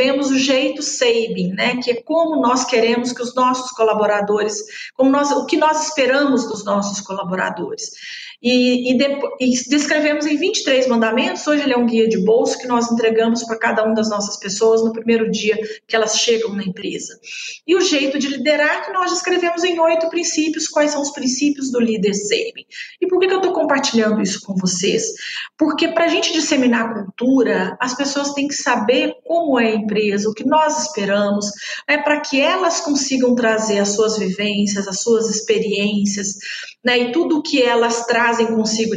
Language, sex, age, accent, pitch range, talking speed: Portuguese, female, 40-59, Brazilian, 220-275 Hz, 190 wpm